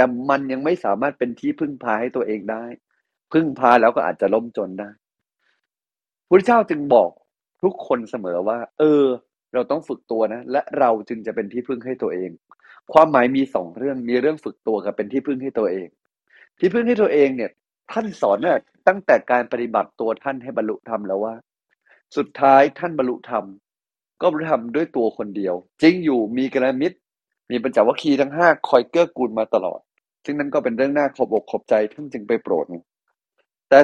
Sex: male